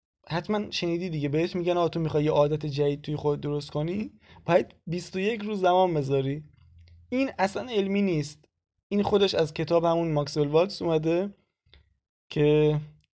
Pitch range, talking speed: 145-180 Hz, 145 wpm